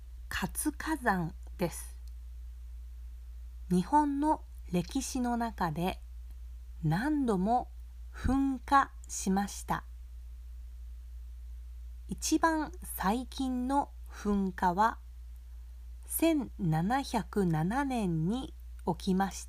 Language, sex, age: Japanese, female, 40-59